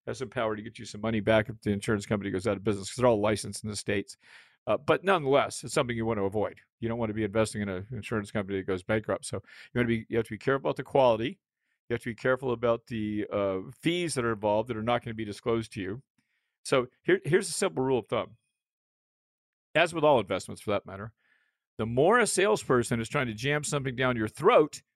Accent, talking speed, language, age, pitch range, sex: American, 245 wpm, English, 50-69, 105-130 Hz, male